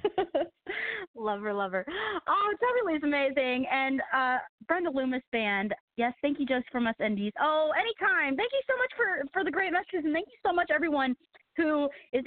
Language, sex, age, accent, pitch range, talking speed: English, female, 30-49, American, 230-300 Hz, 180 wpm